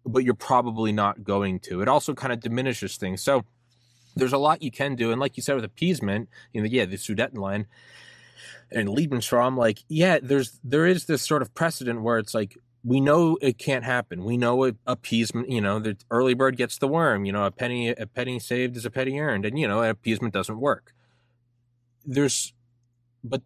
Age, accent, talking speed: 20-39, American, 205 wpm